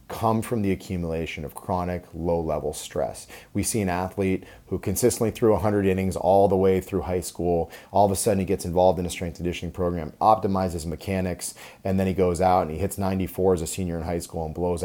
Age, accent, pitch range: 30-49, American, 85-100 Hz